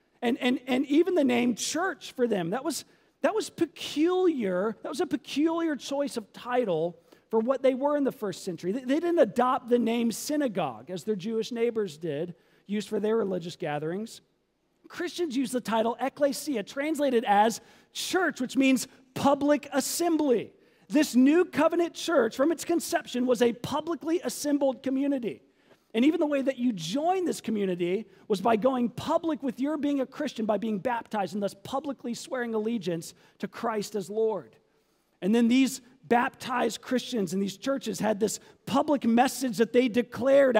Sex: male